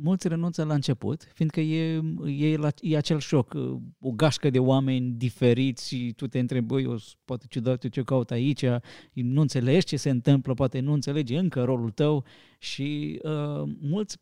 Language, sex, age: Romanian, male, 20-39